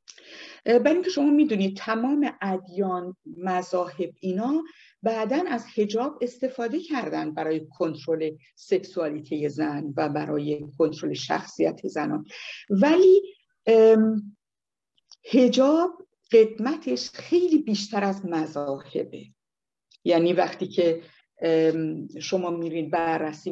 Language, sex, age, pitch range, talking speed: Persian, female, 50-69, 160-225 Hz, 90 wpm